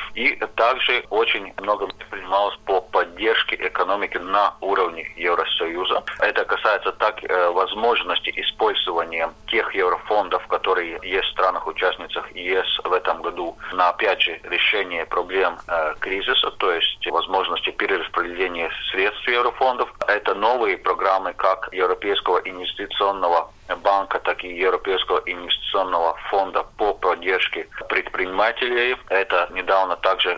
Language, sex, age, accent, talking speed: Russian, male, 40-59, native, 115 wpm